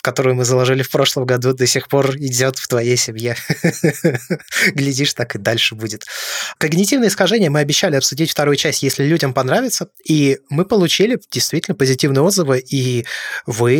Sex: male